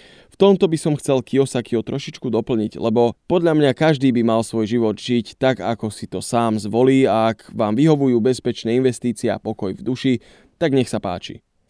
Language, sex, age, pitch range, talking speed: Slovak, male, 20-39, 110-145 Hz, 190 wpm